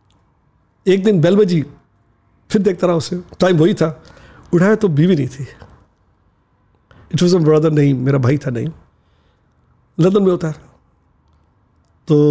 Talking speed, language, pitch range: 130 wpm, English, 135-185 Hz